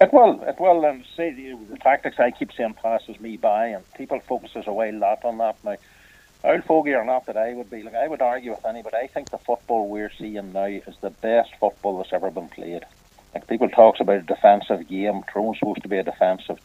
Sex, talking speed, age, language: male, 235 wpm, 60-79, English